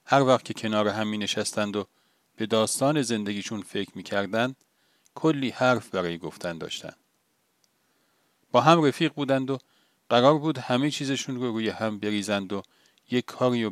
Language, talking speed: Persian, 150 wpm